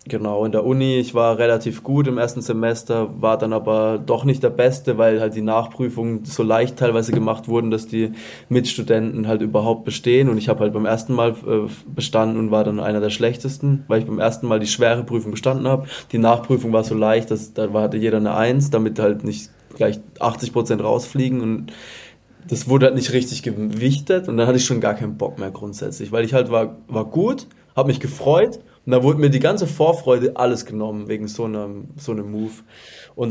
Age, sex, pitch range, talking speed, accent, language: 20-39, male, 110-125 Hz, 215 wpm, German, German